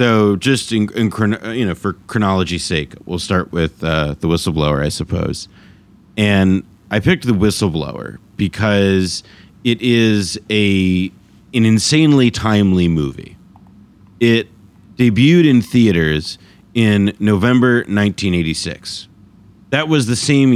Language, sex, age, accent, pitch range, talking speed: English, male, 30-49, American, 95-115 Hz, 120 wpm